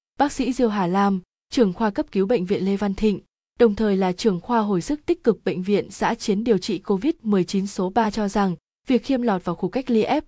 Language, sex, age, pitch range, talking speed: Vietnamese, female, 20-39, 190-230 Hz, 245 wpm